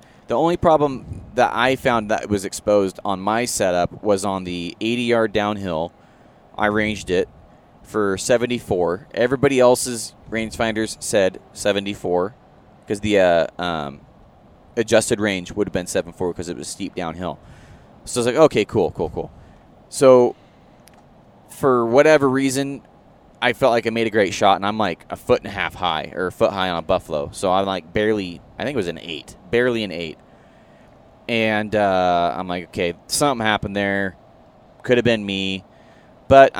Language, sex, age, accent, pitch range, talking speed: English, male, 20-39, American, 95-125 Hz, 170 wpm